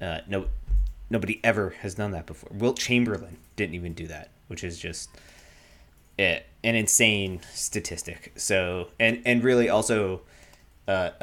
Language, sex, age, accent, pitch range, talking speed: English, male, 20-39, American, 85-100 Hz, 145 wpm